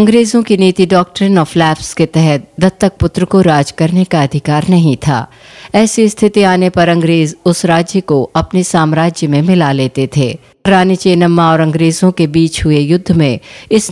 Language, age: Hindi, 50-69